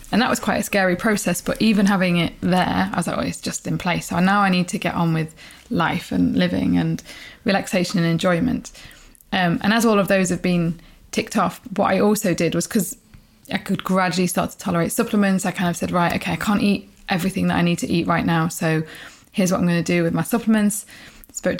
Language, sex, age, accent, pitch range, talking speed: English, female, 20-39, British, 175-195 Hz, 240 wpm